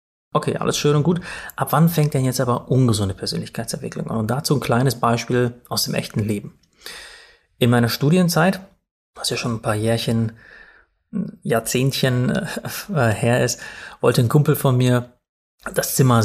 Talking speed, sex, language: 155 wpm, male, German